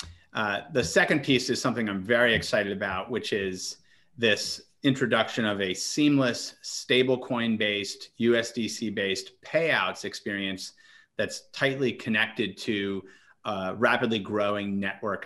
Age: 30-49